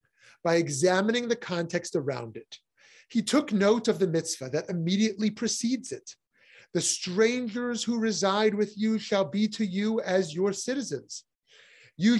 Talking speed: 150 wpm